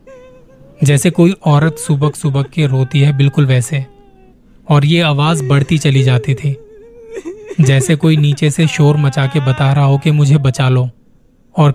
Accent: native